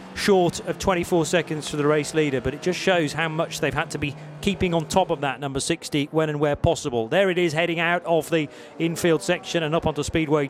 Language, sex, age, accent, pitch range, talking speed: English, male, 40-59, British, 150-185 Hz, 240 wpm